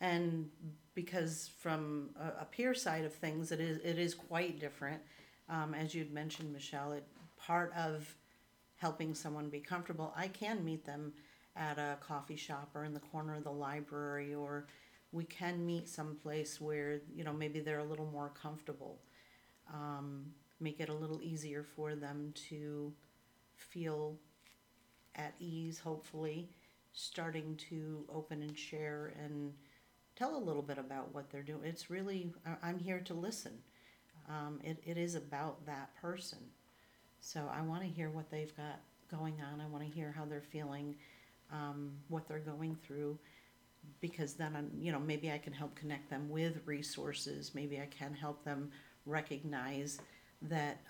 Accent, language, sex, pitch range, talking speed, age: American, English, female, 145-160 Hz, 160 wpm, 50-69